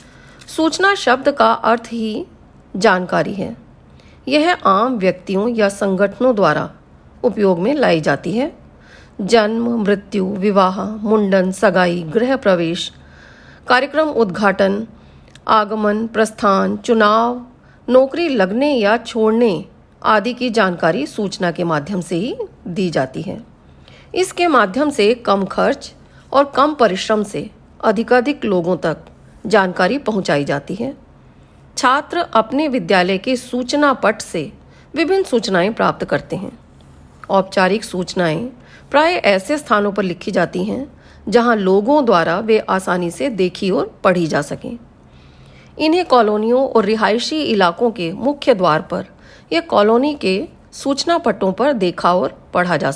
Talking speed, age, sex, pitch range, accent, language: 125 wpm, 40-59, female, 190-255 Hz, native, Hindi